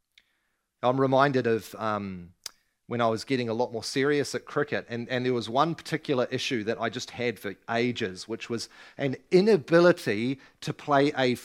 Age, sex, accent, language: 30-49, male, Australian, English